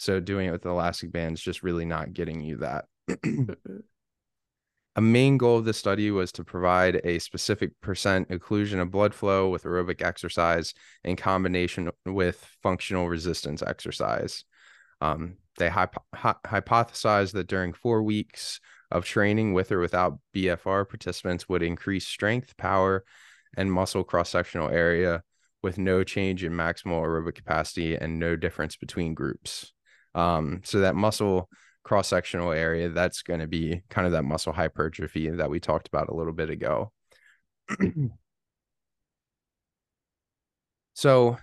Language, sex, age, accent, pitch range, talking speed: English, male, 20-39, American, 85-105 Hz, 140 wpm